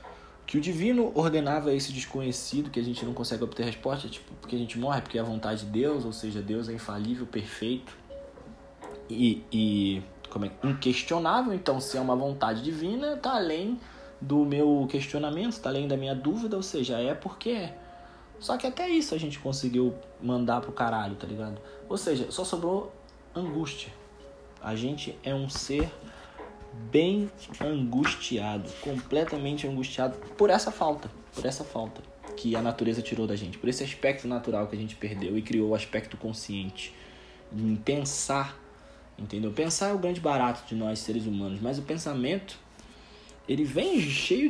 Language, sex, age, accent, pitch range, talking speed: Portuguese, male, 20-39, Brazilian, 110-155 Hz, 170 wpm